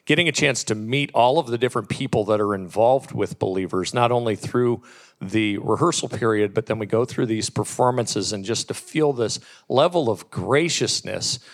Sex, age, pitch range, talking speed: male, 40-59, 110-140 Hz, 185 wpm